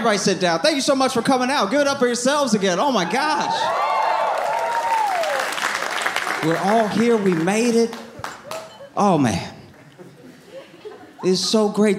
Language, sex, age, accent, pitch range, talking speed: English, male, 30-49, American, 140-225 Hz, 150 wpm